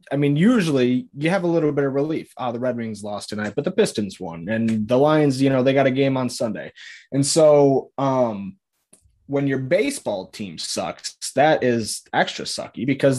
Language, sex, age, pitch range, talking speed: English, male, 20-39, 115-145 Hz, 200 wpm